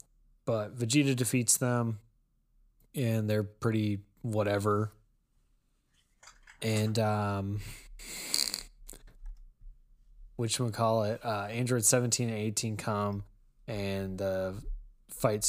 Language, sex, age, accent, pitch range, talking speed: English, male, 20-39, American, 100-120 Hz, 90 wpm